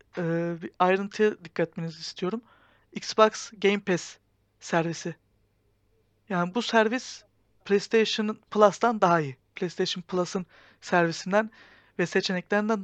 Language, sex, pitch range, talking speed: Turkish, male, 170-210 Hz, 100 wpm